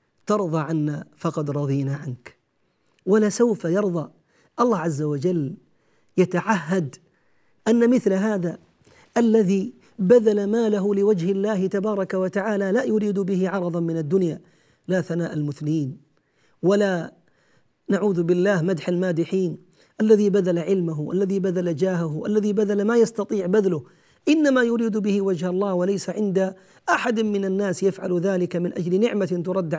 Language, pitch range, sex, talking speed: Arabic, 165-205 Hz, male, 125 wpm